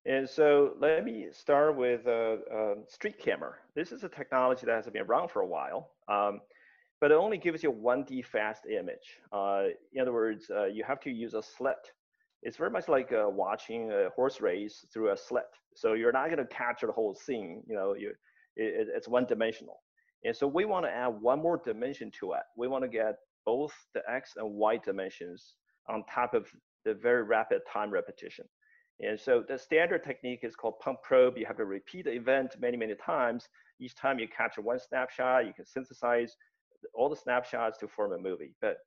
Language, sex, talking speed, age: English, male, 205 wpm, 30-49